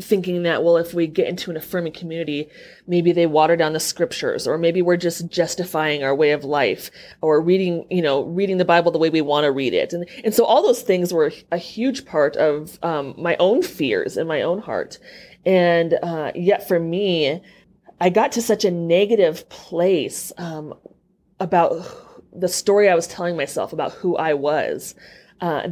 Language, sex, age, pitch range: English, female, 30-49, 160-195 Hz